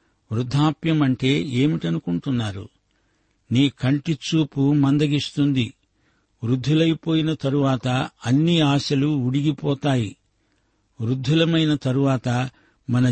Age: 60-79